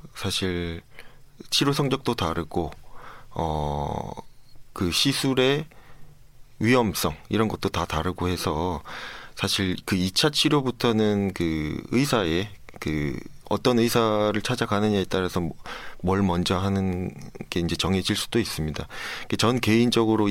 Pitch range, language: 90-115 Hz, Korean